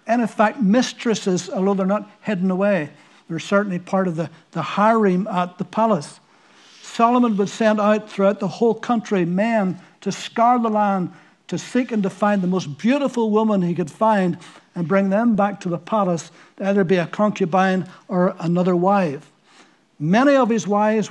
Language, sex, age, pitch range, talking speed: English, male, 60-79, 180-220 Hz, 180 wpm